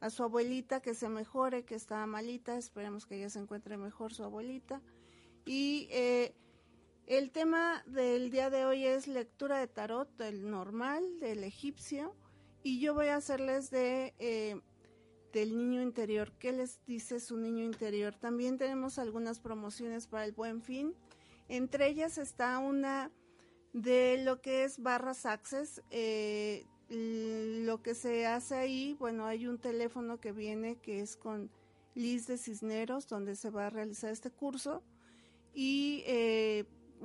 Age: 40-59